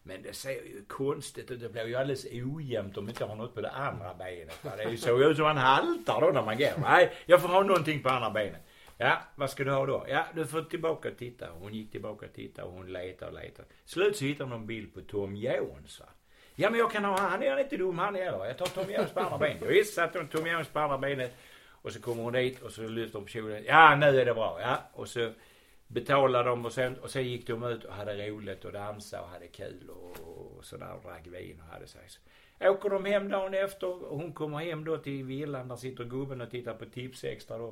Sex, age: male, 60-79